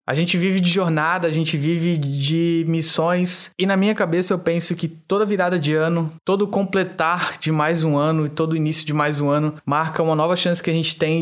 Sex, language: male, Portuguese